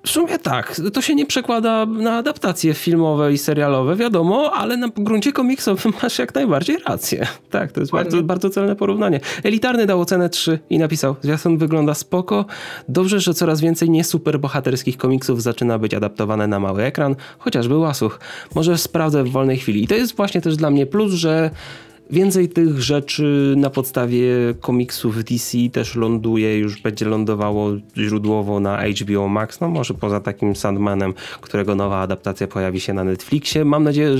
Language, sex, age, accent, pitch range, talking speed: Polish, male, 20-39, native, 105-165 Hz, 170 wpm